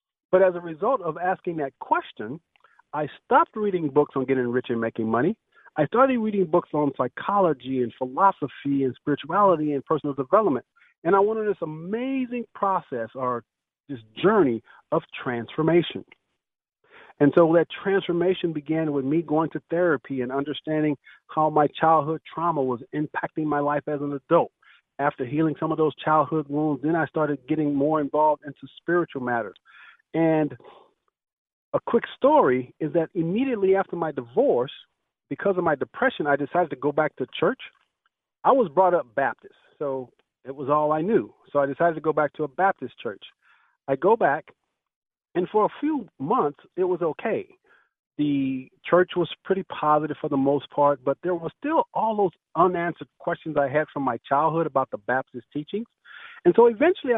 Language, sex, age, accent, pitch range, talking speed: English, male, 50-69, American, 140-190 Hz, 170 wpm